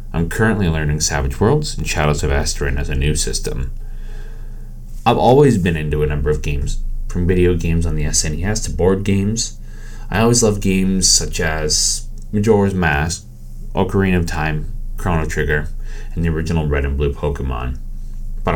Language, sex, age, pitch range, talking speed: English, male, 30-49, 75-105 Hz, 165 wpm